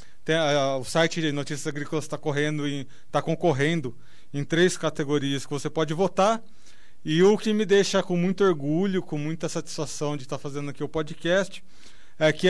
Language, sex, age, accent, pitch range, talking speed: Portuguese, male, 20-39, Brazilian, 140-170 Hz, 160 wpm